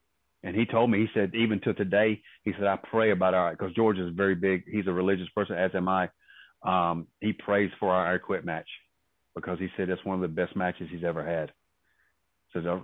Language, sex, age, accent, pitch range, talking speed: English, male, 30-49, American, 90-100 Hz, 225 wpm